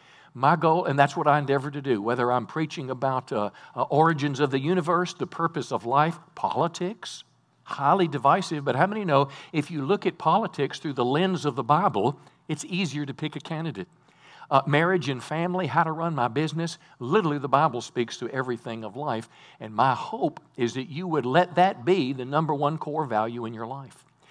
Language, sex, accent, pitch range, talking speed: English, male, American, 135-170 Hz, 200 wpm